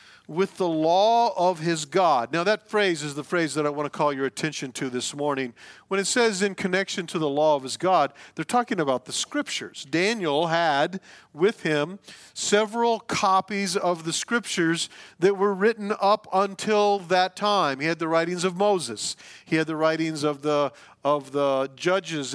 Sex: male